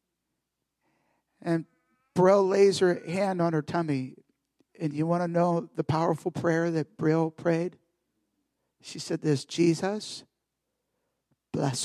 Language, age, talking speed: English, 50-69, 120 wpm